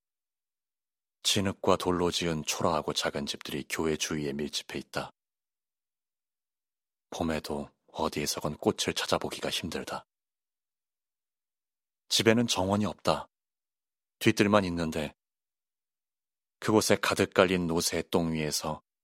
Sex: male